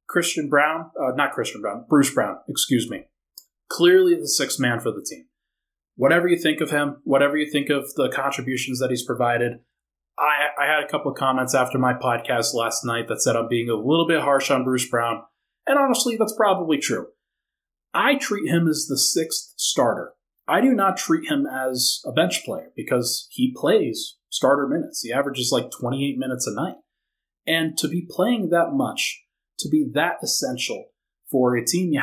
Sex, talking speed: male, 190 wpm